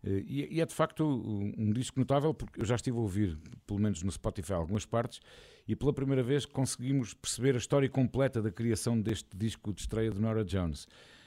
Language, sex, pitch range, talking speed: Portuguese, male, 100-125 Hz, 195 wpm